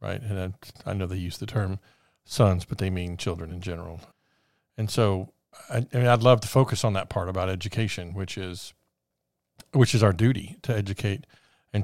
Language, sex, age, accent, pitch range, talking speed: English, male, 50-69, American, 100-120 Hz, 205 wpm